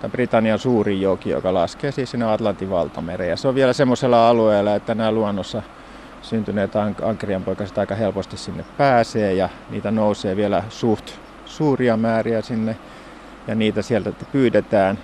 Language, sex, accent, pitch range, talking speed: Finnish, male, native, 100-125 Hz, 150 wpm